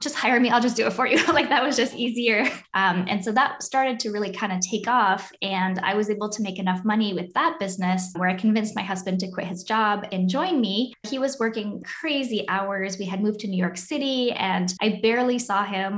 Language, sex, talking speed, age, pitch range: English, female, 245 wpm, 10-29, 185-230 Hz